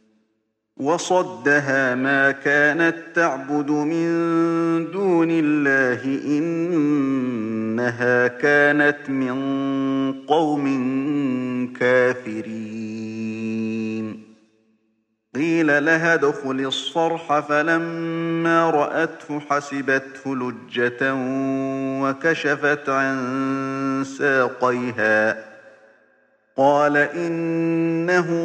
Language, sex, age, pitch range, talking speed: Arabic, male, 50-69, 130-165 Hz, 55 wpm